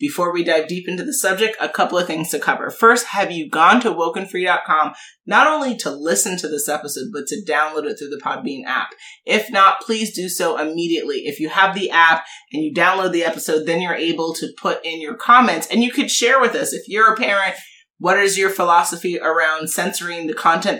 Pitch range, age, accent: 160-200 Hz, 30-49, American